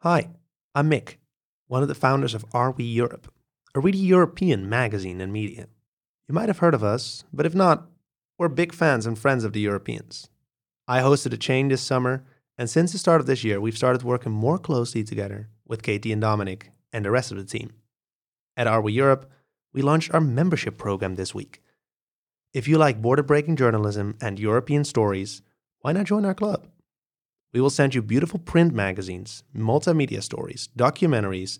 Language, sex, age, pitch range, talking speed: English, male, 30-49, 110-150 Hz, 185 wpm